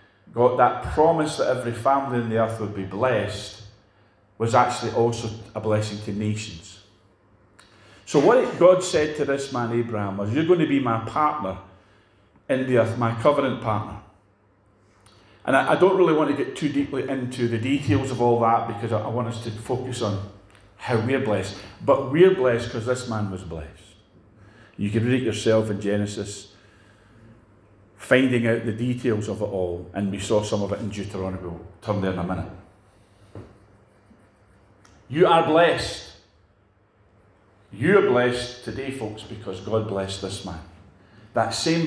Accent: British